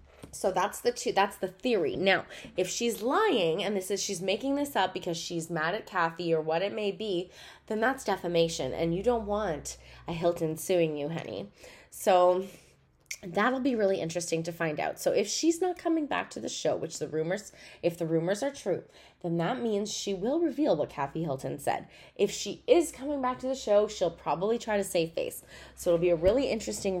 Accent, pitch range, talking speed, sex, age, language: American, 165-225 Hz, 210 wpm, female, 20-39, English